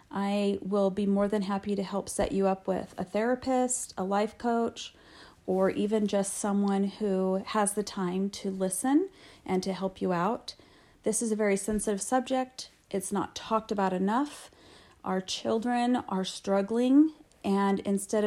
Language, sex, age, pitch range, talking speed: English, female, 40-59, 185-220 Hz, 160 wpm